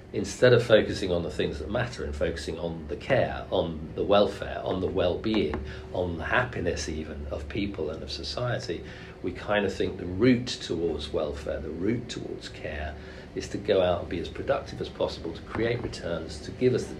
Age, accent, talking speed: 50-69, British, 200 wpm